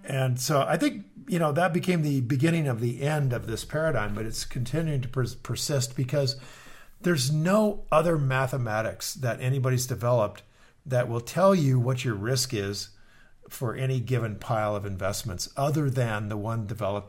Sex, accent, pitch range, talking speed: male, American, 115-150 Hz, 170 wpm